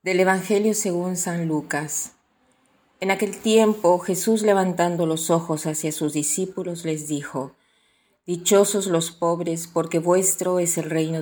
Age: 40-59